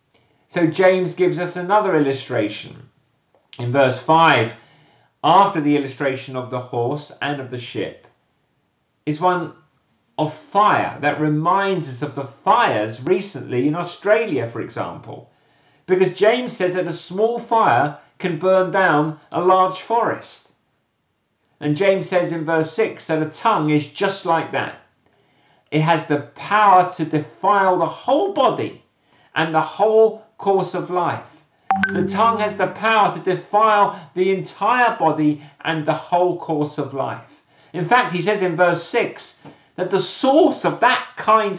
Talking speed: 150 wpm